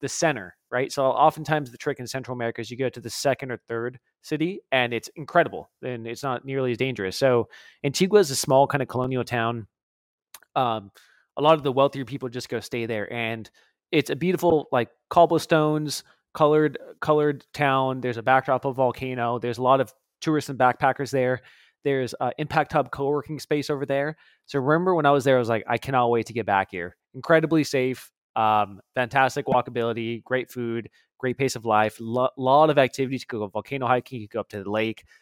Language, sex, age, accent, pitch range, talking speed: English, male, 20-39, American, 115-145 Hz, 210 wpm